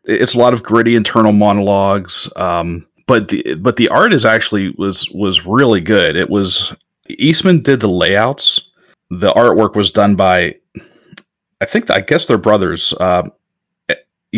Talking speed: 155 wpm